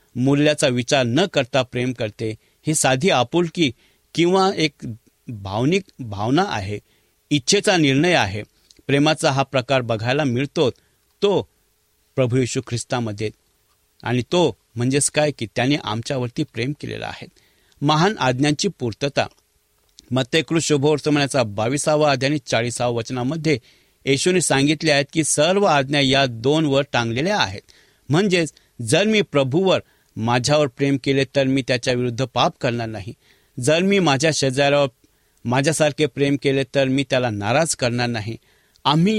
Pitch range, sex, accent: 120-150 Hz, male, Indian